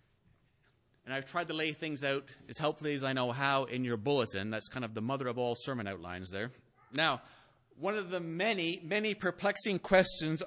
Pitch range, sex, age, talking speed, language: 125-175 Hz, male, 30-49, 195 wpm, English